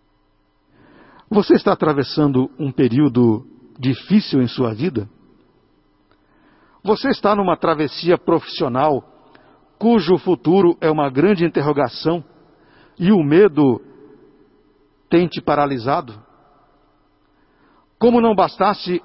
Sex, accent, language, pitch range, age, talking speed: male, Brazilian, Portuguese, 140-225 Hz, 60-79, 90 wpm